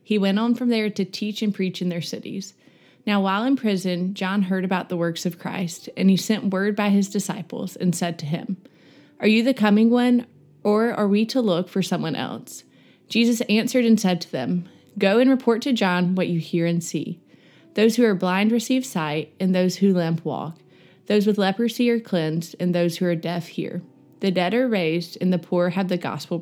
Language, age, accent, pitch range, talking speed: English, 20-39, American, 175-215 Hz, 215 wpm